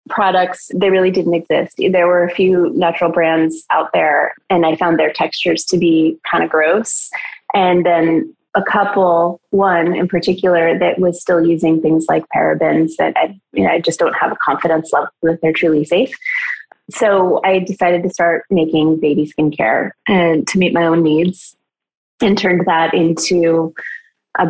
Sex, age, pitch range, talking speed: female, 20-39, 165-195 Hz, 175 wpm